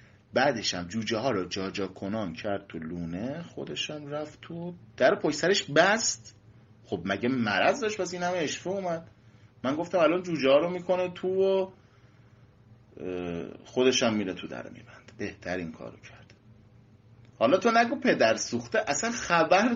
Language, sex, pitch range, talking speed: Persian, male, 110-185 Hz, 160 wpm